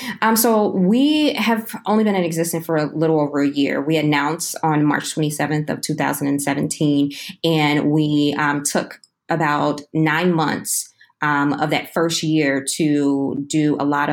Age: 20-39